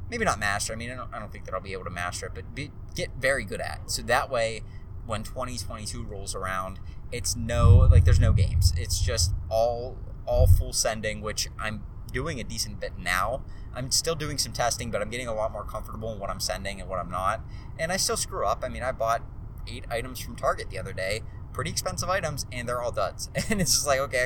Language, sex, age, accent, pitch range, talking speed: English, male, 20-39, American, 95-120 Hz, 240 wpm